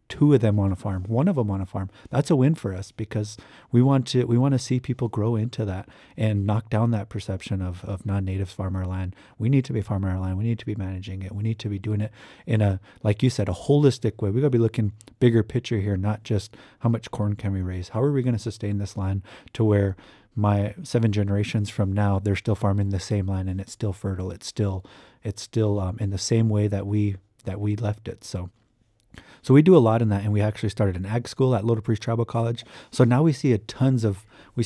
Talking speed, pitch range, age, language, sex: 260 wpm, 100-115 Hz, 30-49, English, male